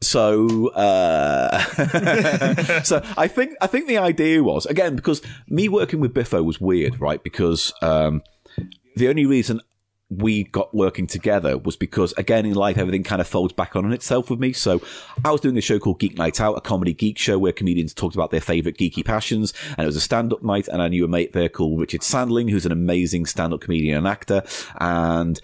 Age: 30-49